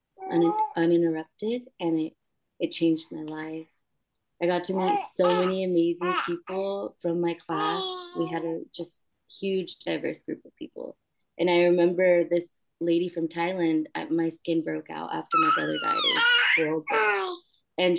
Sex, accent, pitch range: female, American, 165-195 Hz